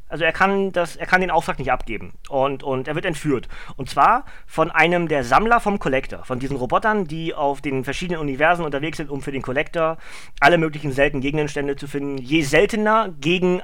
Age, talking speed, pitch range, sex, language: 30-49, 200 wpm, 140-180 Hz, male, German